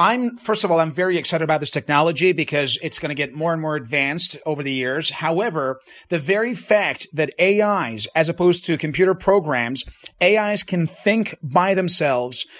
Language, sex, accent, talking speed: English, male, American, 185 wpm